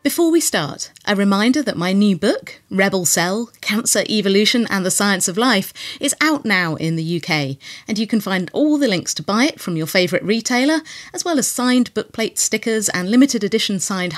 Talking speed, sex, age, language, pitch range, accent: 205 wpm, female, 30-49, English, 170-255 Hz, British